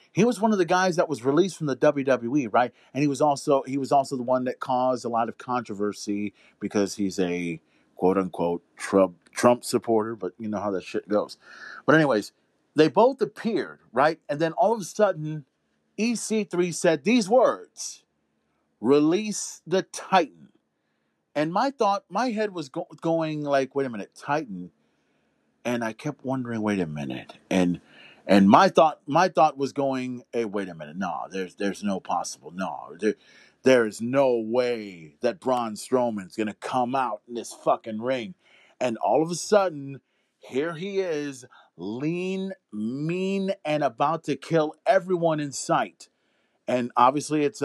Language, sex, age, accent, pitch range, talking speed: English, male, 40-59, American, 115-165 Hz, 165 wpm